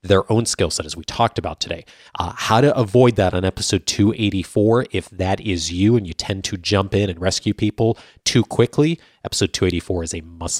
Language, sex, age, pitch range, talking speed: English, male, 30-49, 95-140 Hz, 210 wpm